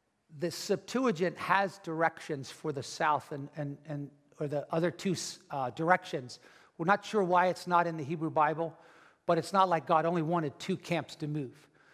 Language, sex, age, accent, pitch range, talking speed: English, male, 60-79, American, 165-205 Hz, 185 wpm